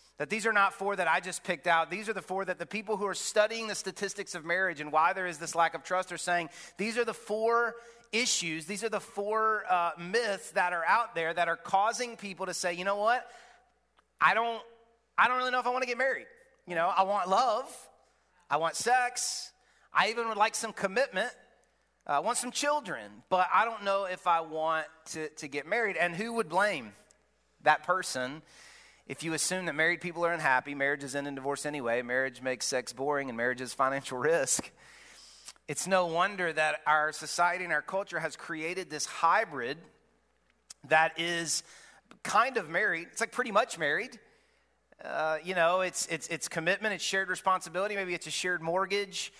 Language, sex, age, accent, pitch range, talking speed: English, male, 30-49, American, 165-215 Hz, 200 wpm